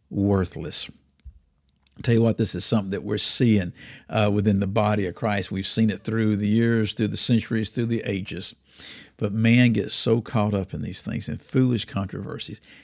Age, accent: 50-69, American